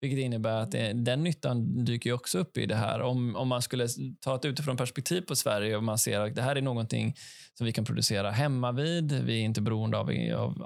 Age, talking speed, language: 20-39, 235 wpm, Swedish